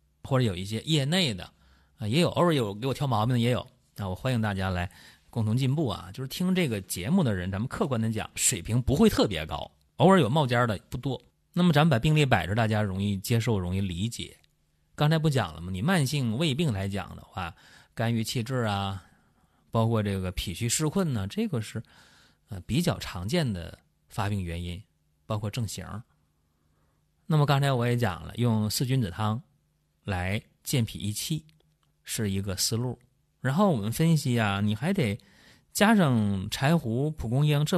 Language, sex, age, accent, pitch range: Chinese, male, 30-49, native, 95-135 Hz